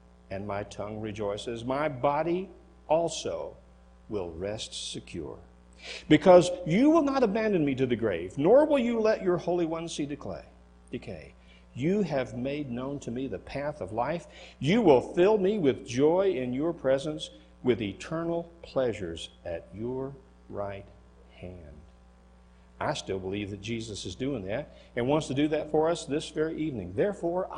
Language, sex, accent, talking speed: English, male, American, 160 wpm